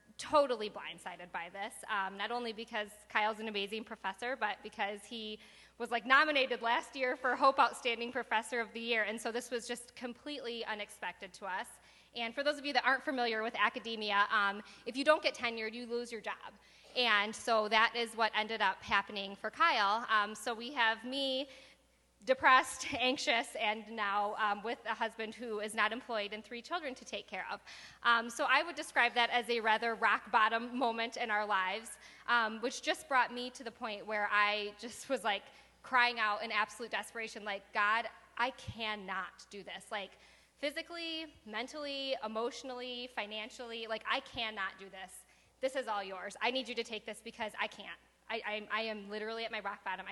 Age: 20-39